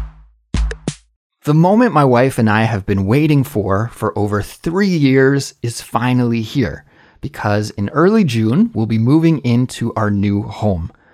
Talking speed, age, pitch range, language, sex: 150 wpm, 30-49, 105-140 Hz, English, male